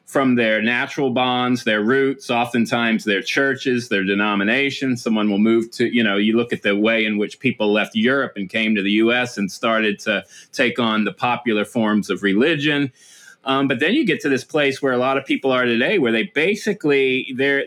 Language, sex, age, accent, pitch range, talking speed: English, male, 30-49, American, 110-135 Hz, 205 wpm